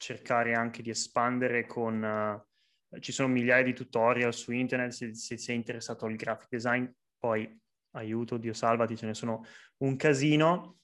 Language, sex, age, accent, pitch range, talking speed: Italian, male, 20-39, native, 115-135 Hz, 155 wpm